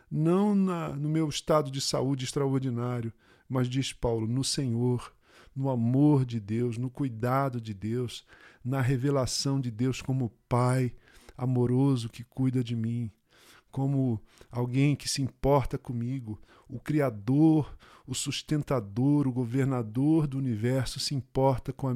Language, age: Portuguese, 40-59